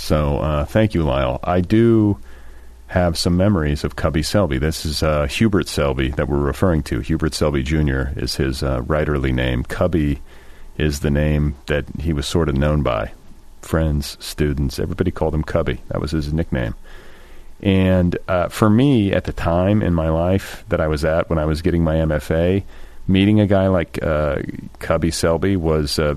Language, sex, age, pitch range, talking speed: English, male, 40-59, 70-85 Hz, 185 wpm